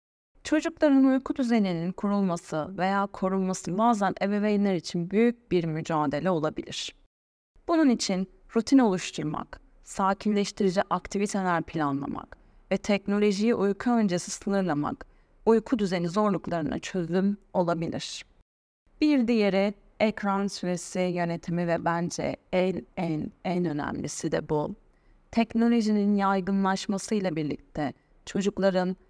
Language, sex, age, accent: Turkish, female, 30-49, native